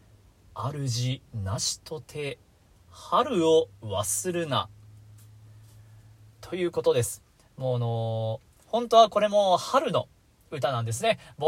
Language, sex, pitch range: Japanese, male, 120-180 Hz